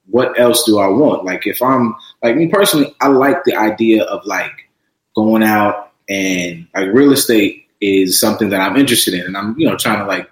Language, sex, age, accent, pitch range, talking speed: English, male, 20-39, American, 105-155 Hz, 210 wpm